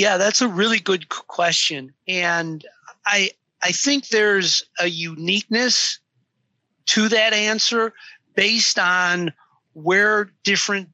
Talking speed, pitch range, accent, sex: 110 wpm, 155-200 Hz, American, male